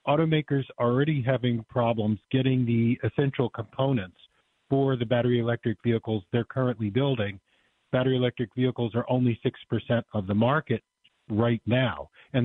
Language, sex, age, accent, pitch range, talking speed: English, male, 50-69, American, 115-145 Hz, 140 wpm